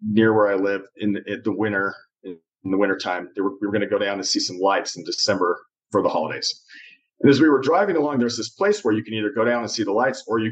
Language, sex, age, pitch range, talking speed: English, male, 40-59, 110-155 Hz, 290 wpm